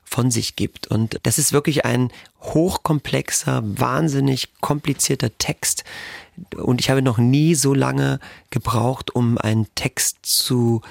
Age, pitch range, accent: 30-49, 115-135 Hz, German